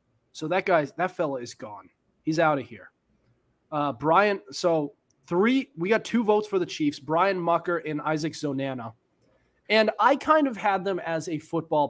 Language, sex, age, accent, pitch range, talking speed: English, male, 30-49, American, 145-195 Hz, 180 wpm